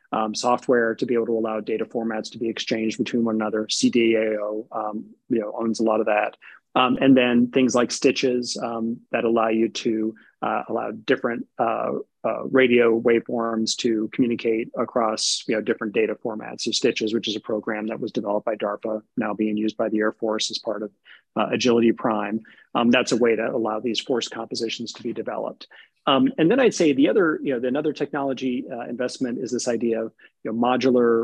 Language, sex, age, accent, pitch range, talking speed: English, male, 30-49, American, 110-125 Hz, 200 wpm